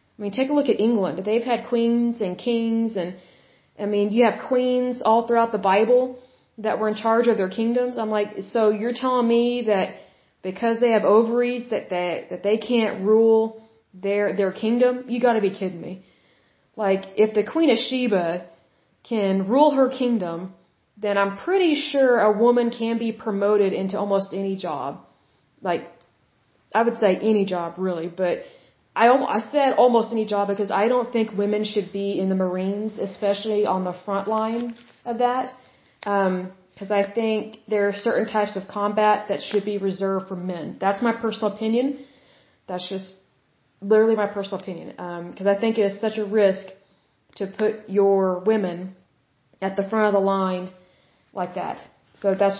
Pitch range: 190-230 Hz